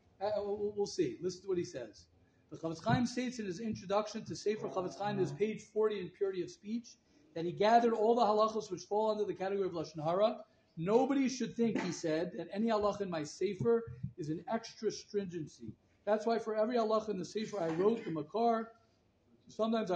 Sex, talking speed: male, 205 wpm